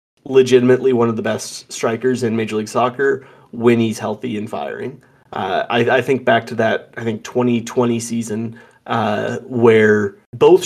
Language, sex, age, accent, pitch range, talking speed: English, male, 30-49, American, 110-130 Hz, 165 wpm